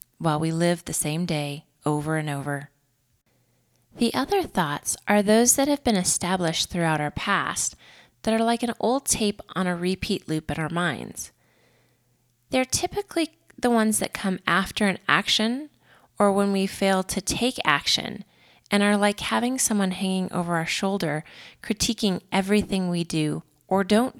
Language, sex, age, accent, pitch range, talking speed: English, female, 20-39, American, 155-215 Hz, 160 wpm